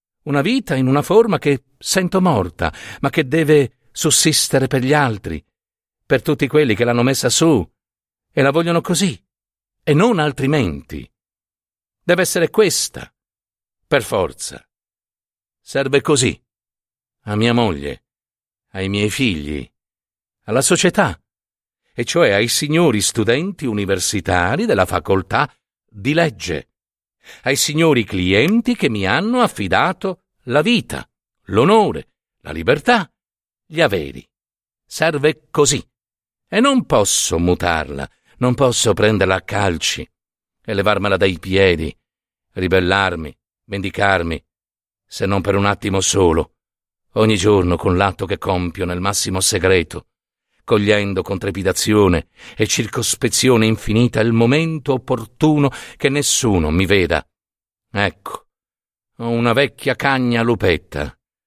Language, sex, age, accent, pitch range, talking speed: Italian, male, 50-69, native, 95-145 Hz, 115 wpm